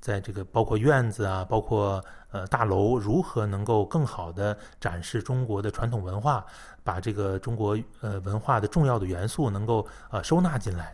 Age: 20-39